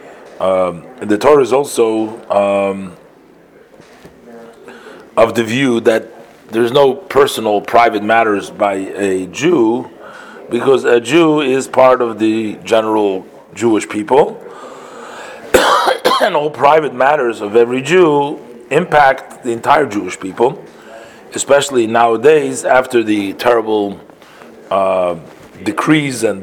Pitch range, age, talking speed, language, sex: 100-125 Hz, 40-59, 110 wpm, English, male